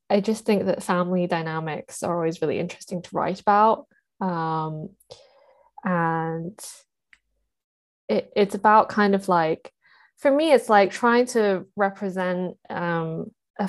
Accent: British